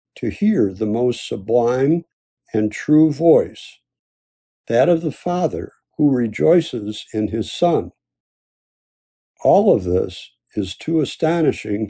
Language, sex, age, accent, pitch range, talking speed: English, male, 60-79, American, 110-160 Hz, 115 wpm